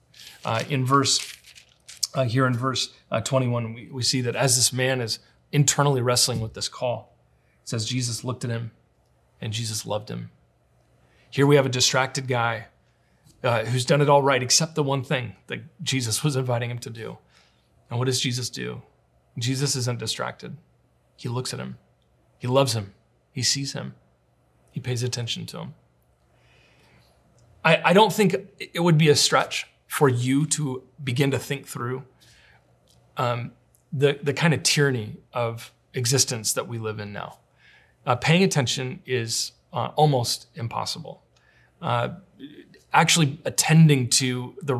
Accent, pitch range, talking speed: American, 120-140 Hz, 160 wpm